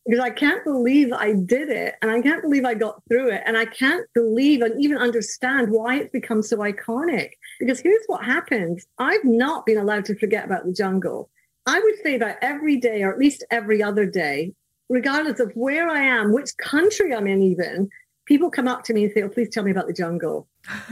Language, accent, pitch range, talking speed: English, British, 210-280 Hz, 220 wpm